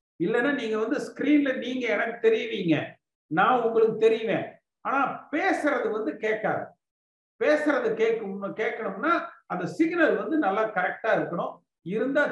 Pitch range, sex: 190-260 Hz, male